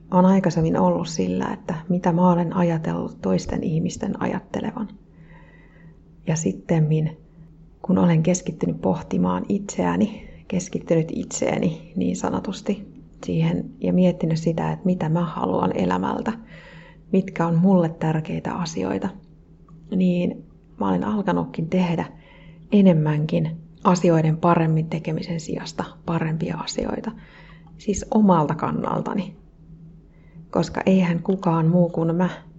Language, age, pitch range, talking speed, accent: Finnish, 30-49, 160-180 Hz, 105 wpm, native